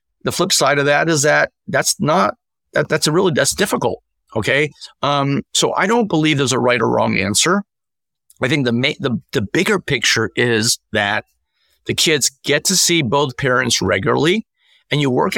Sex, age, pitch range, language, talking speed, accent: male, 50-69, 125-155 Hz, English, 185 wpm, American